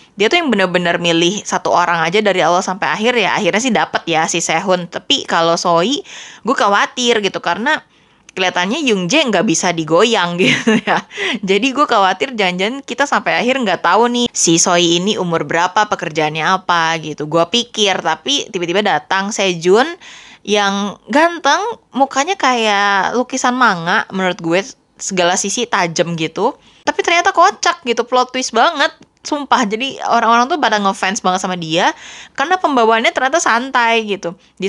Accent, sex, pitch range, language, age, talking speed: native, female, 185-245 Hz, Indonesian, 20-39, 160 wpm